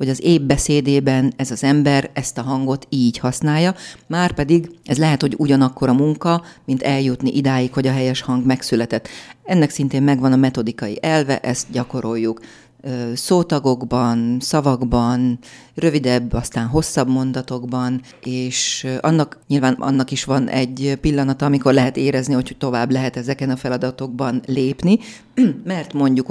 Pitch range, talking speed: 130-150 Hz, 140 wpm